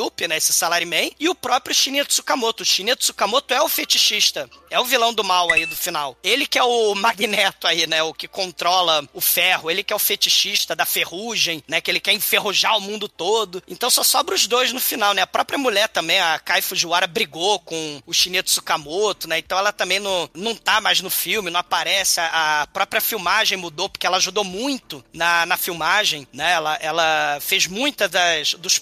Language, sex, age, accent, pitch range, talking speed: Portuguese, male, 20-39, Brazilian, 175-235 Hz, 205 wpm